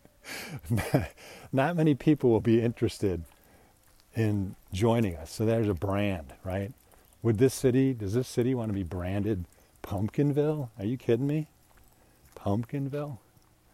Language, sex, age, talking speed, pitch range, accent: English, male, 50-69, 130 wpm, 90-120 Hz, American